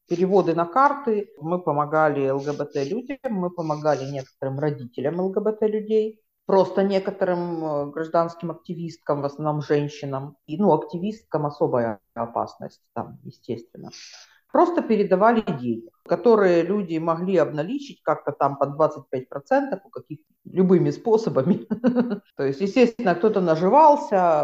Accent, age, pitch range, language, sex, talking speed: native, 50-69, 140-200 Hz, Russian, female, 105 wpm